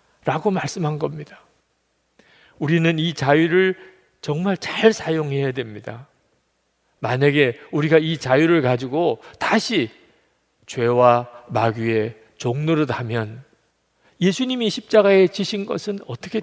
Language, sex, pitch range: Korean, male, 130-190 Hz